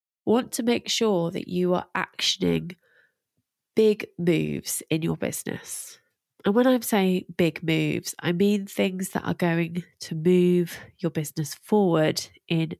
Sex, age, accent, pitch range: female, 20-39, British, 160-195 Hz